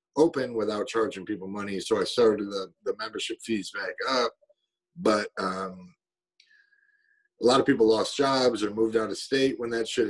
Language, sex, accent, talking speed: English, male, American, 180 wpm